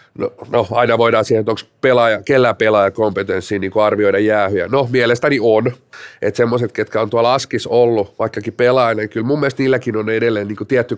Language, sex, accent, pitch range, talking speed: Finnish, male, native, 115-145 Hz, 175 wpm